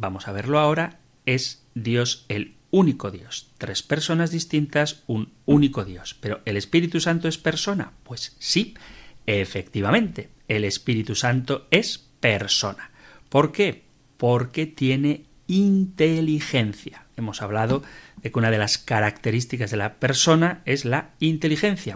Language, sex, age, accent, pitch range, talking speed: Spanish, male, 40-59, Spanish, 115-160 Hz, 130 wpm